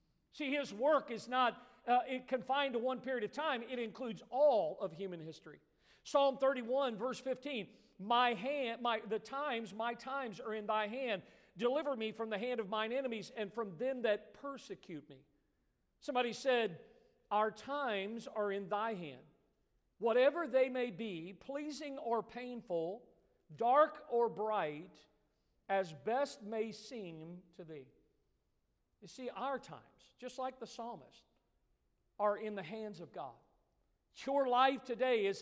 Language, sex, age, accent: English, male, 50-69, American